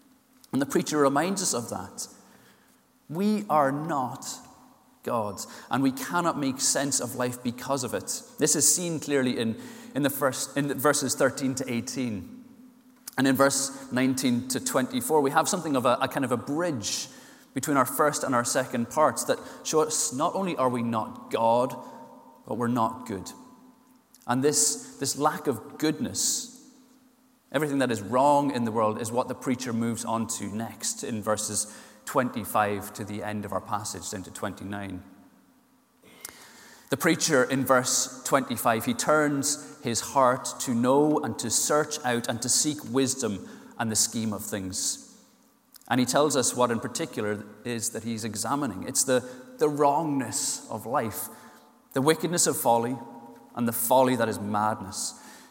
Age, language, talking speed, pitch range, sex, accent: 30-49, English, 165 wpm, 115-155 Hz, male, British